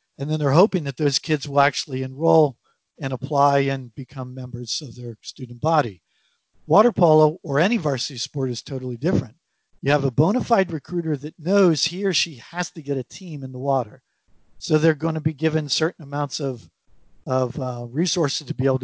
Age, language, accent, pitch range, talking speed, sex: 50-69, English, American, 135-170 Hz, 200 wpm, male